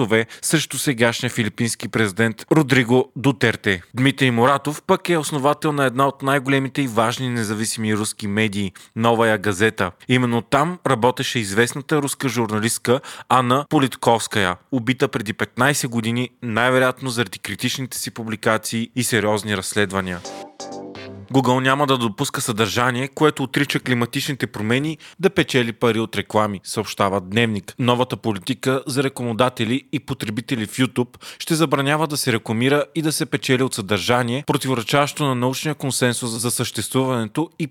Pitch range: 110-135 Hz